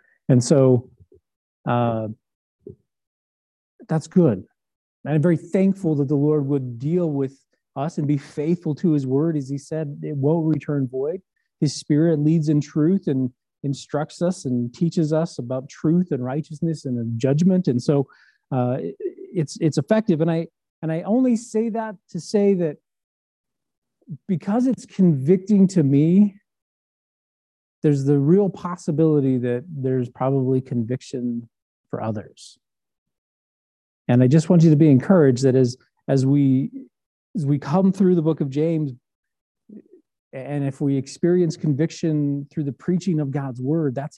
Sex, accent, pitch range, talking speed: male, American, 130-165 Hz, 150 wpm